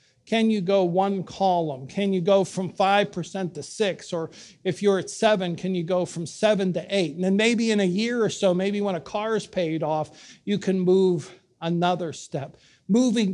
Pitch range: 160-195 Hz